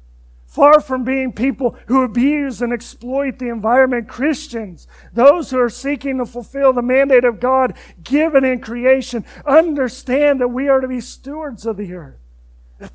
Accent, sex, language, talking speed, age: American, male, English, 160 wpm, 40-59